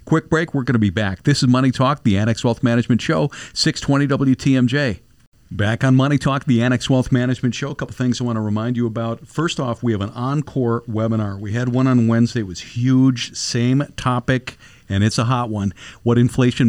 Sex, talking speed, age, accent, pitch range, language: male, 215 wpm, 50-69, American, 110-130 Hz, English